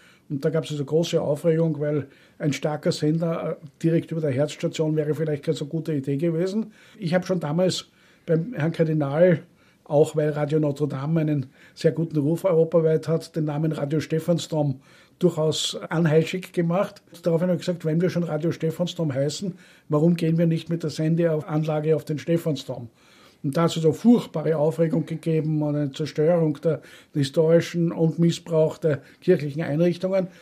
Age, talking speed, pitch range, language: 50-69, 170 wpm, 155-170 Hz, German